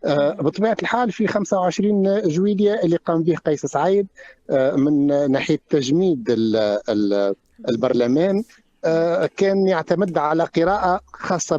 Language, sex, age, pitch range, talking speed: Arabic, male, 50-69, 135-200 Hz, 100 wpm